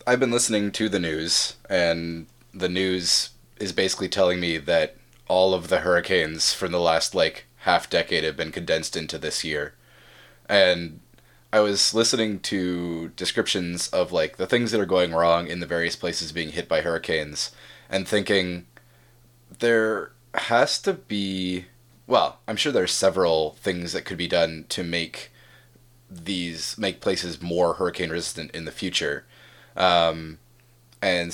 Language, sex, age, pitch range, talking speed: English, male, 20-39, 85-100 Hz, 155 wpm